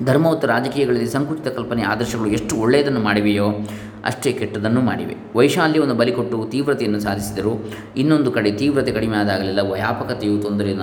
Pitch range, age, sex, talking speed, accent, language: 105-125 Hz, 20-39, male, 115 wpm, native, Kannada